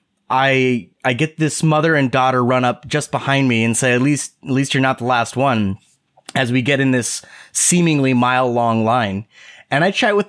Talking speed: 210 wpm